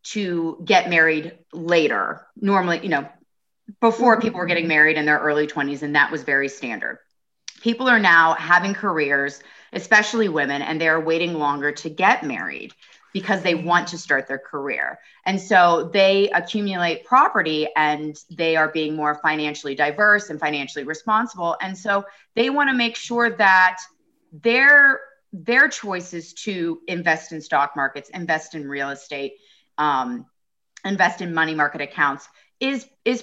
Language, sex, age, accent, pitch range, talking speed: English, female, 30-49, American, 160-225 Hz, 150 wpm